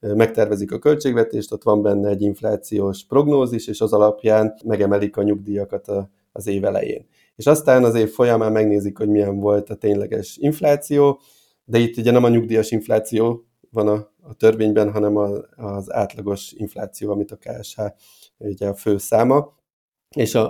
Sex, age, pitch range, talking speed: male, 30-49, 105-115 Hz, 155 wpm